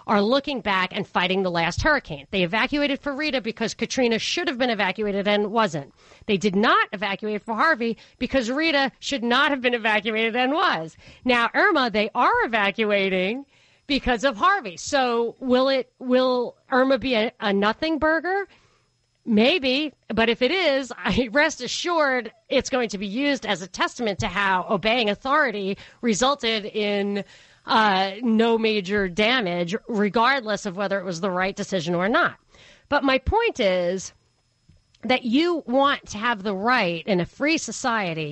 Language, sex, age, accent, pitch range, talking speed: English, female, 40-59, American, 200-265 Hz, 165 wpm